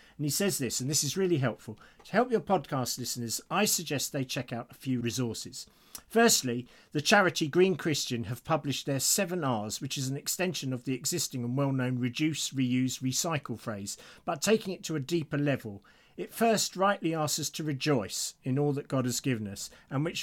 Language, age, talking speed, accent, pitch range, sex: English, 50-69, 200 wpm, British, 120-160 Hz, male